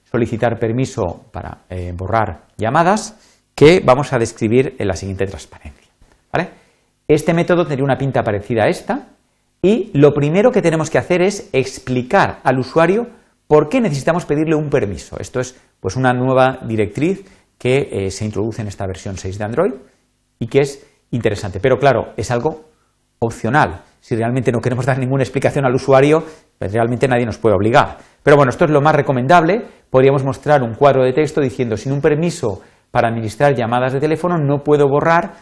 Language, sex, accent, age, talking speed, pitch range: Spanish, male, Spanish, 40-59, 175 wpm, 115-150 Hz